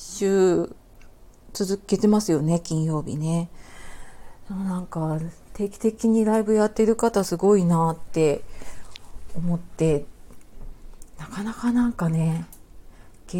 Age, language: 40-59, Japanese